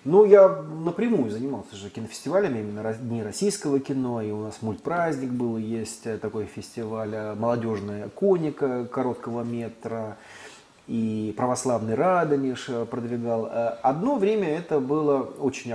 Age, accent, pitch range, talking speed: 30-49, native, 115-145 Hz, 120 wpm